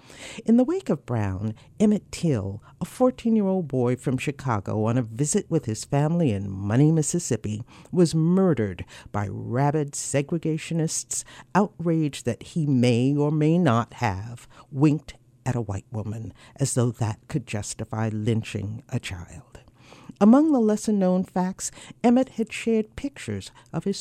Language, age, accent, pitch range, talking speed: English, 50-69, American, 115-175 Hz, 140 wpm